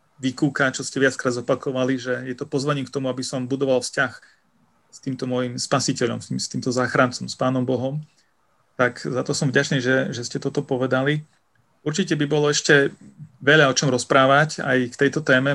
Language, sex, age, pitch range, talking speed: Slovak, male, 40-59, 130-145 Hz, 180 wpm